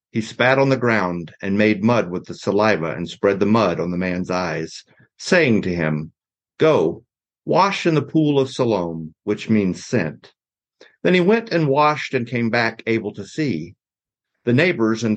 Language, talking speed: English, 180 wpm